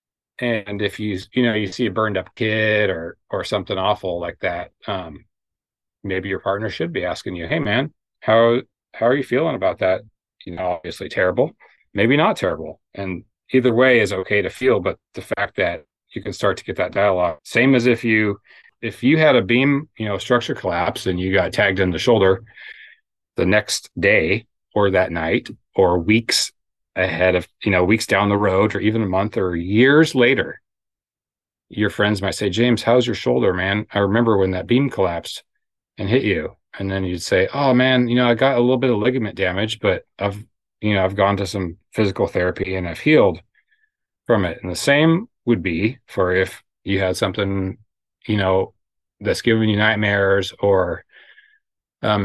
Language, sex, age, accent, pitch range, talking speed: English, male, 30-49, American, 95-120 Hz, 195 wpm